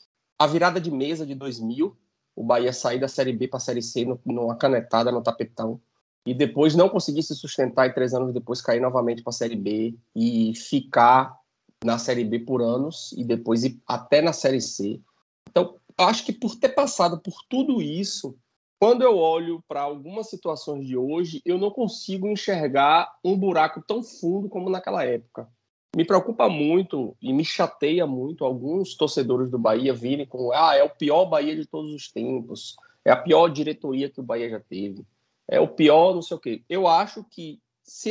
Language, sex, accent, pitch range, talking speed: Portuguese, male, Brazilian, 125-185 Hz, 190 wpm